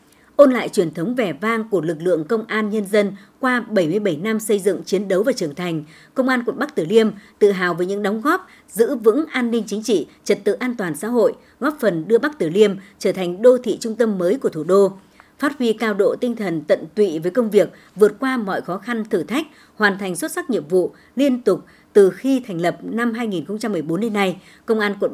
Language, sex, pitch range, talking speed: Vietnamese, male, 190-245 Hz, 240 wpm